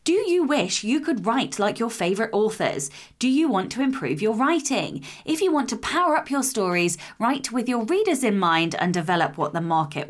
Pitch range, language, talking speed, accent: 185-290 Hz, English, 215 wpm, British